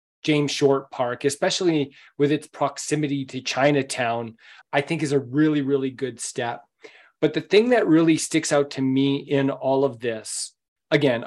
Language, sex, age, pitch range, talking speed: English, male, 40-59, 130-155 Hz, 165 wpm